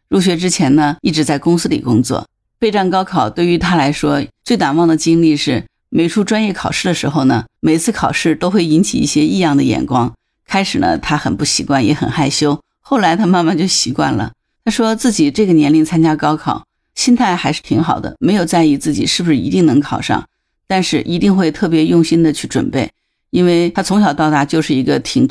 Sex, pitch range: female, 150-180 Hz